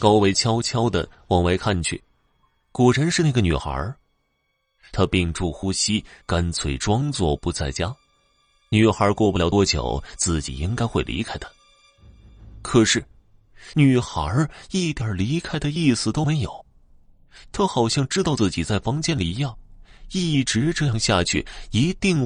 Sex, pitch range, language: male, 85-135 Hz, Chinese